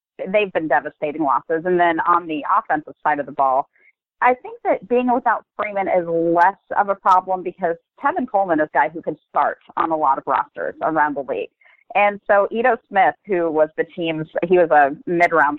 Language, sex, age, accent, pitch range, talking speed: English, female, 30-49, American, 160-200 Hz, 205 wpm